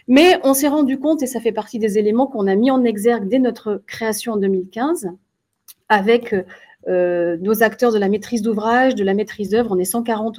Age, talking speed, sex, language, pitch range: 30-49, 210 wpm, female, French, 205-270 Hz